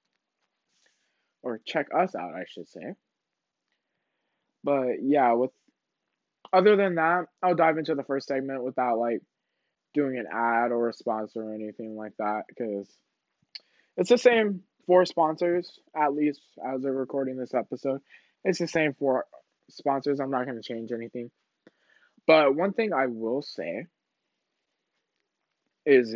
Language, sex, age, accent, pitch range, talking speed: English, male, 20-39, American, 130-175 Hz, 140 wpm